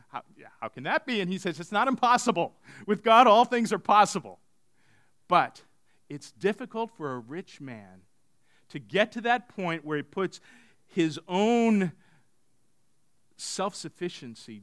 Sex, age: male, 50-69